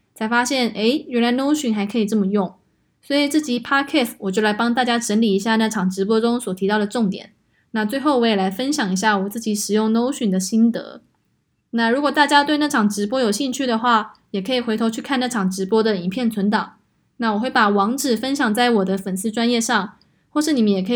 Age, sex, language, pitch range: 20-39, female, Chinese, 205-255 Hz